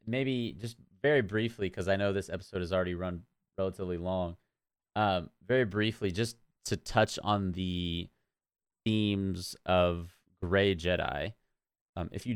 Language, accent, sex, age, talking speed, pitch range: English, American, male, 30-49, 140 wpm, 85-105 Hz